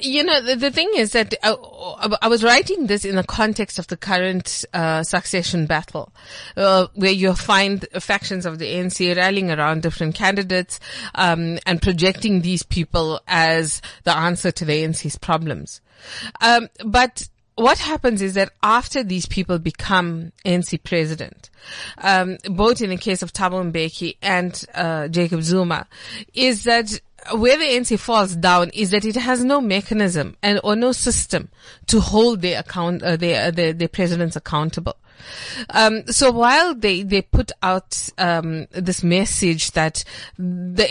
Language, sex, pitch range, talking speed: English, female, 170-215 Hz, 160 wpm